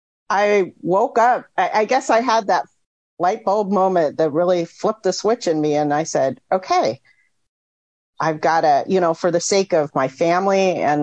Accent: American